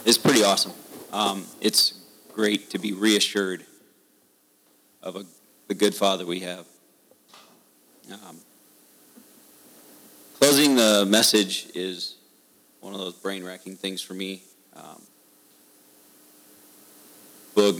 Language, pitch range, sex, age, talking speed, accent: English, 75-100 Hz, male, 40-59, 100 wpm, American